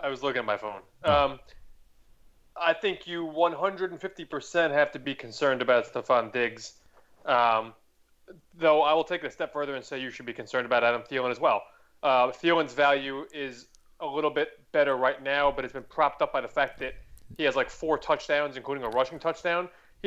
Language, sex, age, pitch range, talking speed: English, male, 20-39, 140-205 Hz, 200 wpm